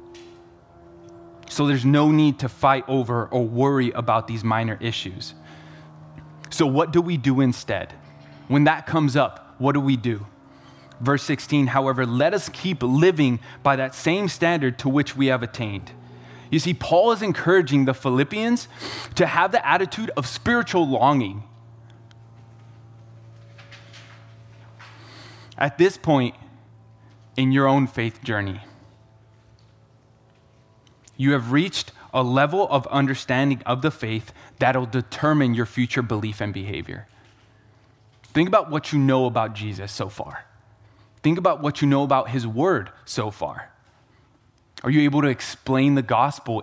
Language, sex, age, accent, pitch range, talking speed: English, male, 20-39, American, 110-140 Hz, 140 wpm